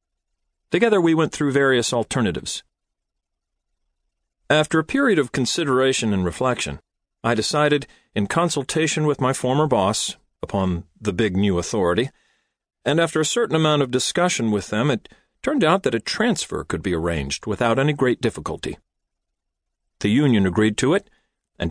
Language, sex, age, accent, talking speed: English, male, 40-59, American, 150 wpm